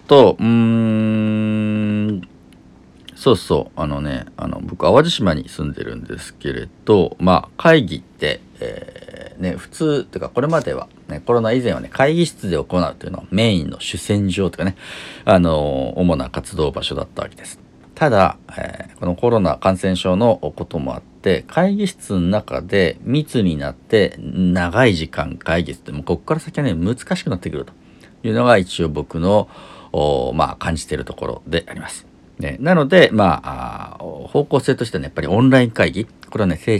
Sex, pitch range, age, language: male, 80-115 Hz, 50-69, Japanese